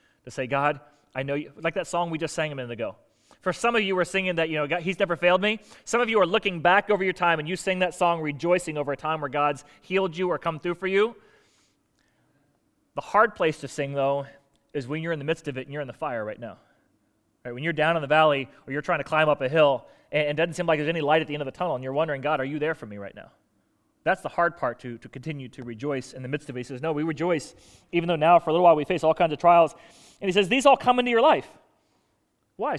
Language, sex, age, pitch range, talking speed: English, male, 30-49, 150-195 Hz, 290 wpm